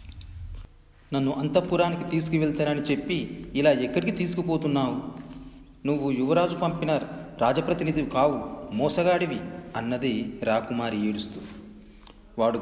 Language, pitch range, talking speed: Telugu, 115-175 Hz, 80 wpm